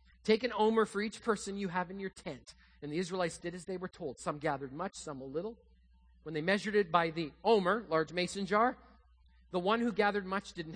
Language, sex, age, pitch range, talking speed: English, male, 40-59, 140-195 Hz, 230 wpm